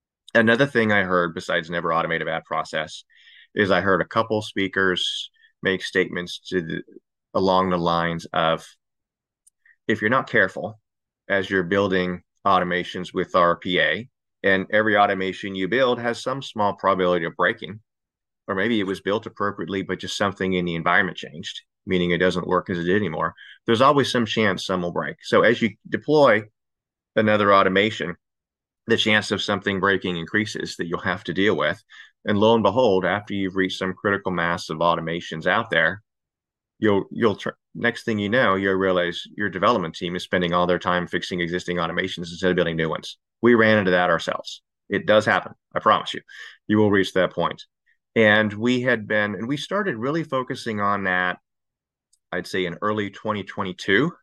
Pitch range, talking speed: 90-110 Hz, 180 wpm